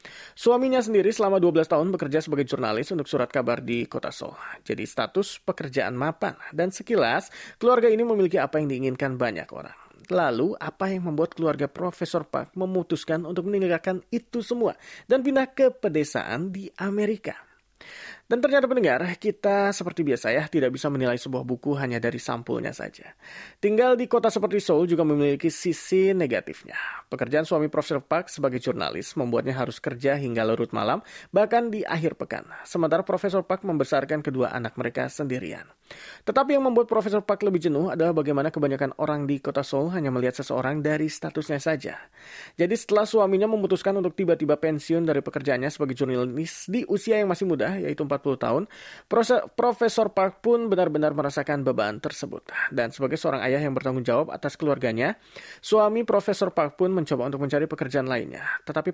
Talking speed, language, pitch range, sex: 165 wpm, German, 140-195 Hz, male